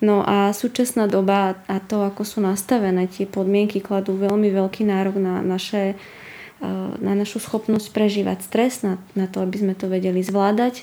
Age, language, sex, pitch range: 20-39, Slovak, female, 195-220 Hz